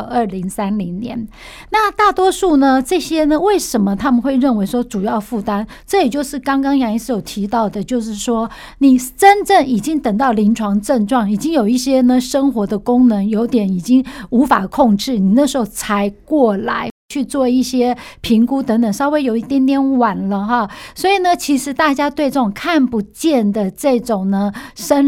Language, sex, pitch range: Chinese, female, 215-275 Hz